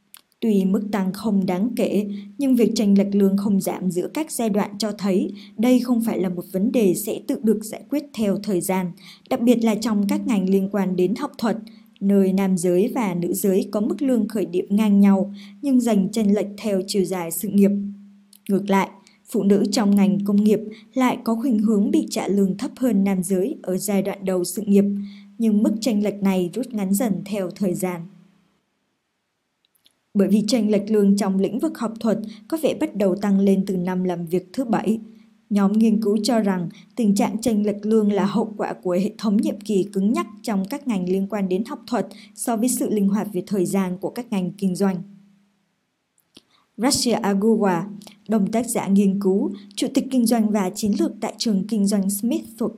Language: Vietnamese